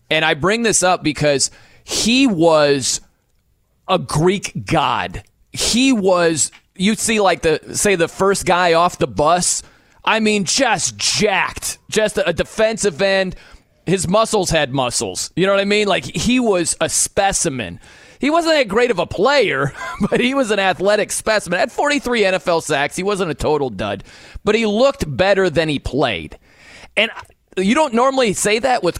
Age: 30-49